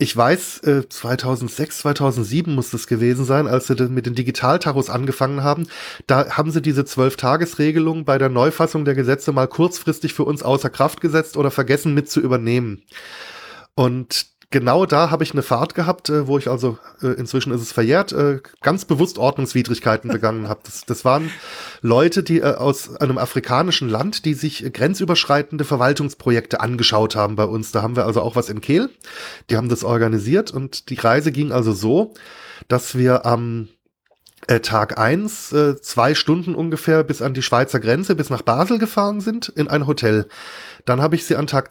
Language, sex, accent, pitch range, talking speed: German, male, German, 125-165 Hz, 175 wpm